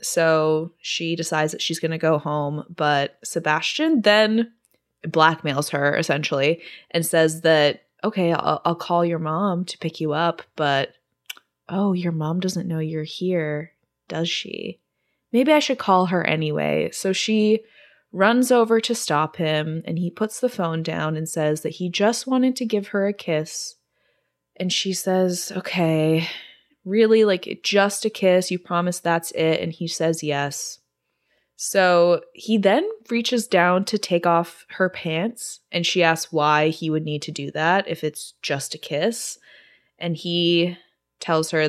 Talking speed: 165 wpm